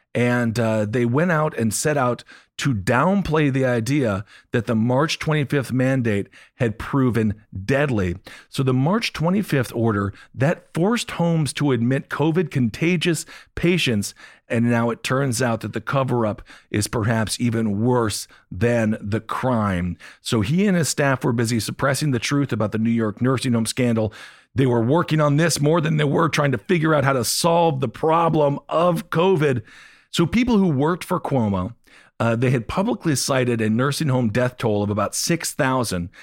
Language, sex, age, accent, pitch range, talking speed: English, male, 40-59, American, 115-150 Hz, 175 wpm